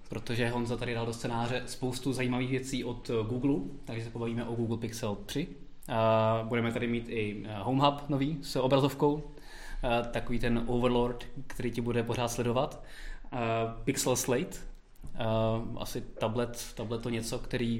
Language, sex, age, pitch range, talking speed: Czech, male, 20-39, 115-135 Hz, 145 wpm